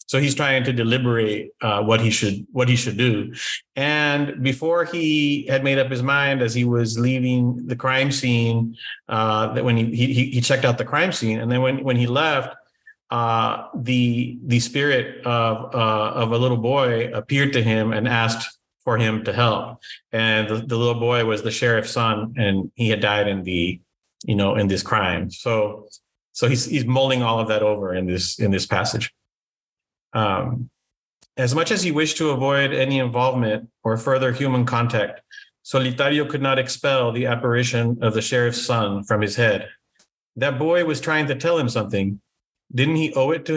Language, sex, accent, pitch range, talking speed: English, male, American, 110-130 Hz, 190 wpm